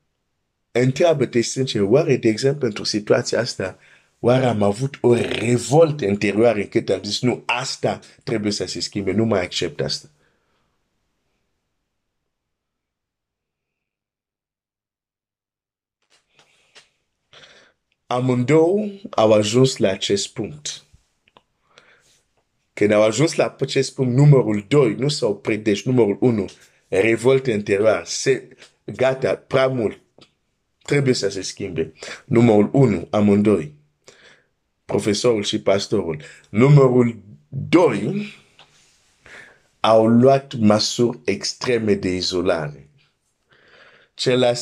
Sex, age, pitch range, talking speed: male, 50-69, 105-130 Hz, 95 wpm